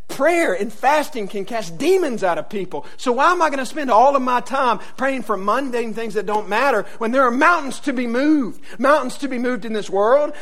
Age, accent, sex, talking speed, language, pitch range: 50-69, American, male, 235 wpm, English, 165-260 Hz